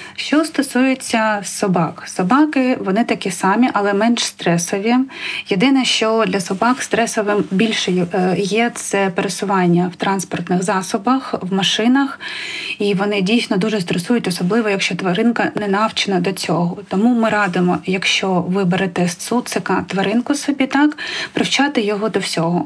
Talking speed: 135 wpm